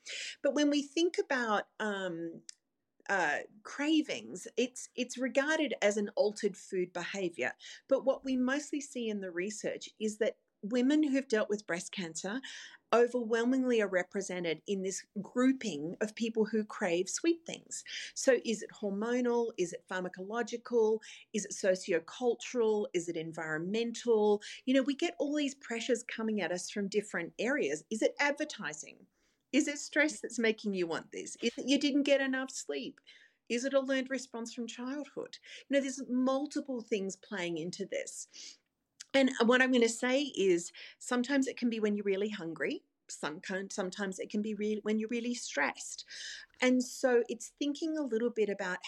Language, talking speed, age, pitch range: English, 165 wpm, 40-59, 200-265 Hz